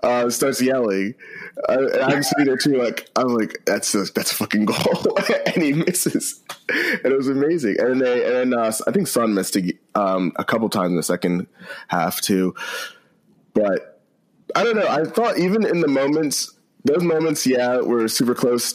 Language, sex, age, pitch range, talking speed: English, male, 20-39, 105-140 Hz, 180 wpm